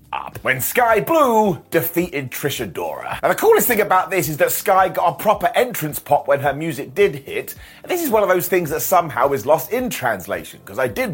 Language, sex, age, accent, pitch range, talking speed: English, male, 30-49, British, 155-220 Hz, 225 wpm